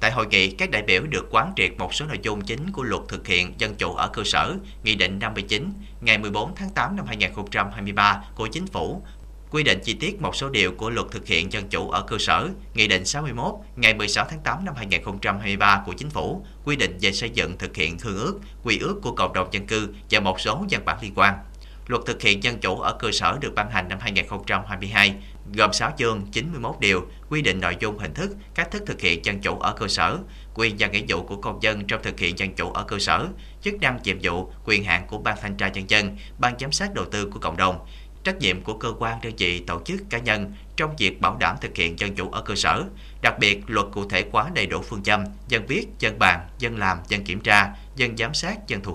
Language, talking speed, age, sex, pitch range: Vietnamese, 245 wpm, 30-49, male, 95-115 Hz